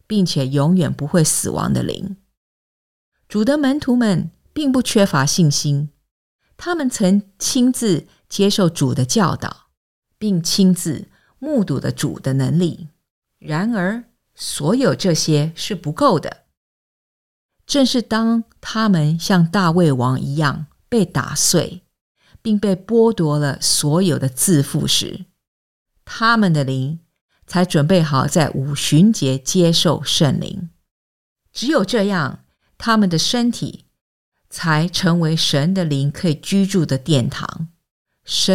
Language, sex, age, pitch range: English, female, 50-69, 150-210 Hz